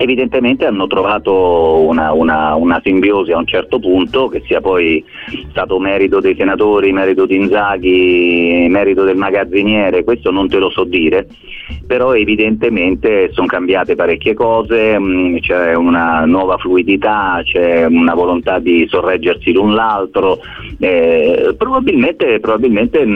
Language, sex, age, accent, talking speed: Italian, male, 30-49, native, 120 wpm